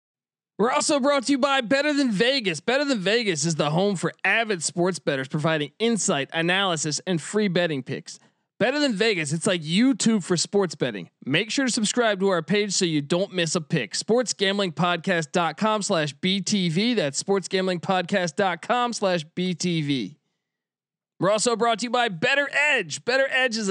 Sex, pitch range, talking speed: male, 165-230 Hz, 170 wpm